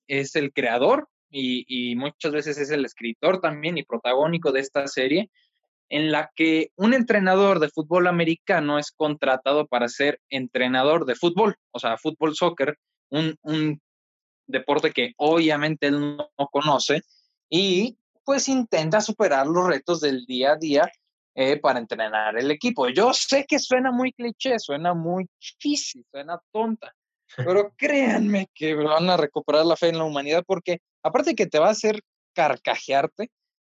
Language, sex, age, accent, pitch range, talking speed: Spanish, male, 20-39, Mexican, 145-205 Hz, 160 wpm